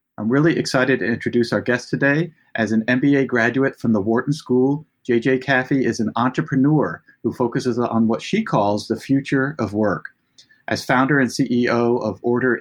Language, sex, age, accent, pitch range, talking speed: English, male, 40-59, American, 115-130 Hz, 175 wpm